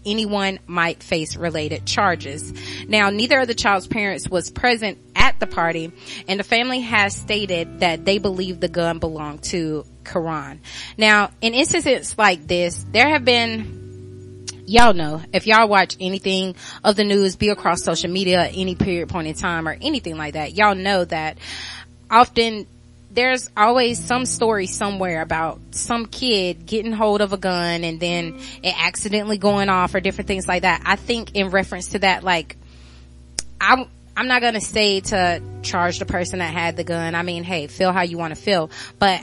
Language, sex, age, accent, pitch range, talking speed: English, female, 20-39, American, 165-210 Hz, 180 wpm